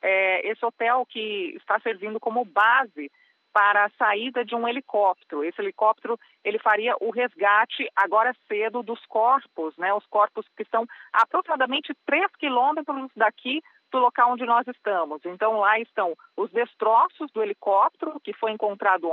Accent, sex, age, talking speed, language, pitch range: Brazilian, female, 40-59, 150 wpm, Portuguese, 215-265 Hz